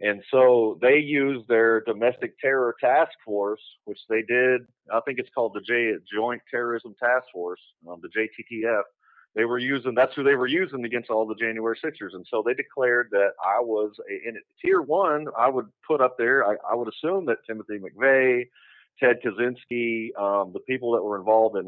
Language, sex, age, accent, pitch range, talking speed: English, male, 40-59, American, 105-135 Hz, 195 wpm